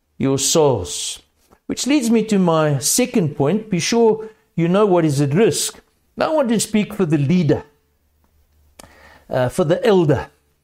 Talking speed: 165 wpm